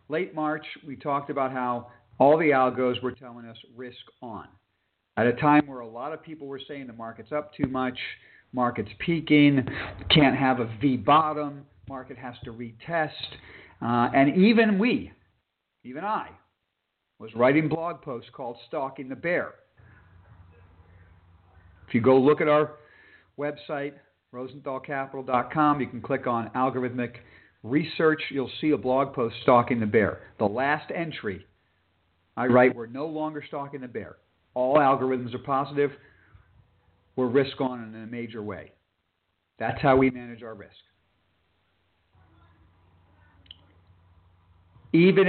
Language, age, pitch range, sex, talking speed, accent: English, 50-69, 100-145 Hz, male, 140 wpm, American